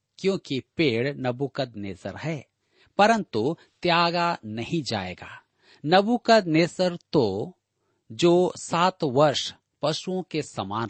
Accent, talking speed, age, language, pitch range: native, 90 wpm, 40-59, Hindi, 120-175 Hz